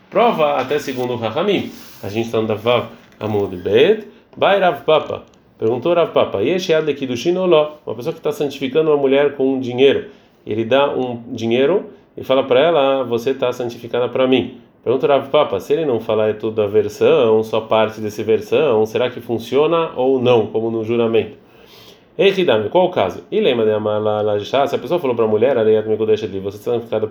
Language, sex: Portuguese, male